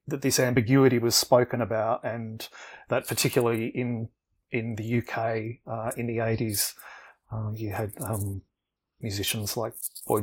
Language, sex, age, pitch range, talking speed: English, male, 30-49, 110-125 Hz, 140 wpm